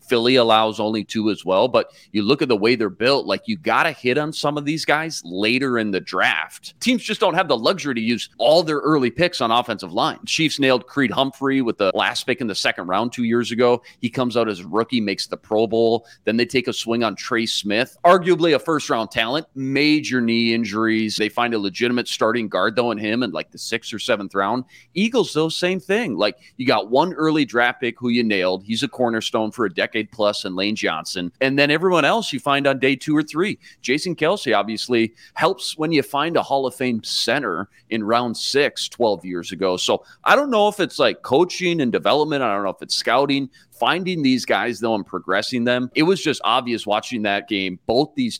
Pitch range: 110-145 Hz